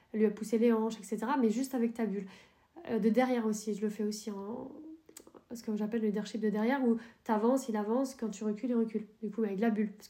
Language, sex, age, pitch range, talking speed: French, female, 20-39, 220-245 Hz, 250 wpm